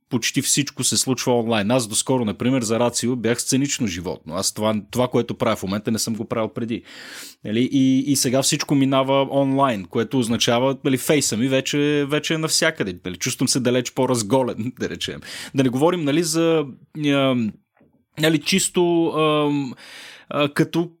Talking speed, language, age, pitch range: 150 wpm, Bulgarian, 30-49, 125-170 Hz